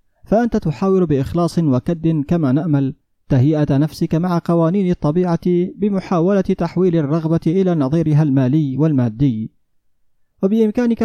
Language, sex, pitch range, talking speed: Arabic, male, 140-170 Hz, 105 wpm